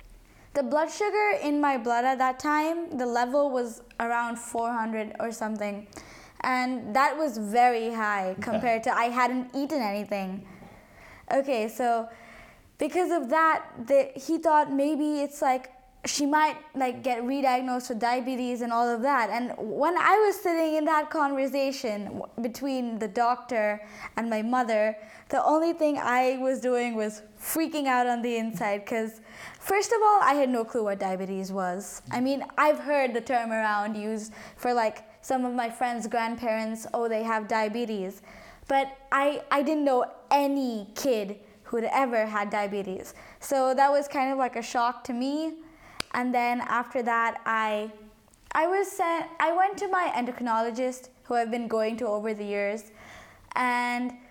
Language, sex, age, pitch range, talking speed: English, female, 20-39, 225-275 Hz, 165 wpm